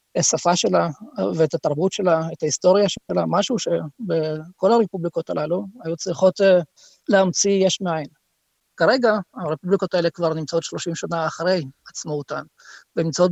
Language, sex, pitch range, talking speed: Hebrew, male, 160-190 Hz, 130 wpm